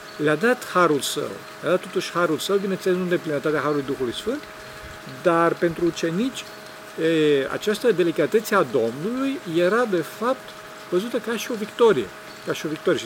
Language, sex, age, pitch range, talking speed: Romanian, male, 50-69, 145-200 Hz, 160 wpm